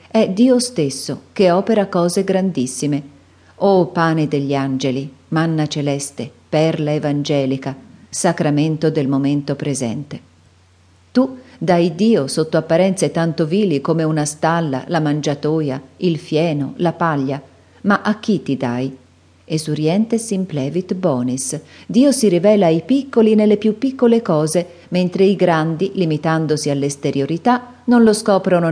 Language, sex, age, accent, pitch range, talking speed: Italian, female, 40-59, native, 145-195 Hz, 130 wpm